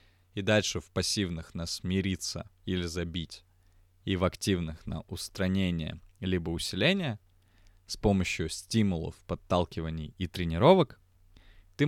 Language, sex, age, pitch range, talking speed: Russian, male, 20-39, 90-110 Hz, 110 wpm